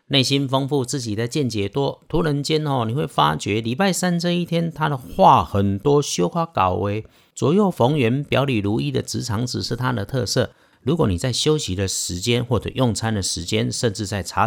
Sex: male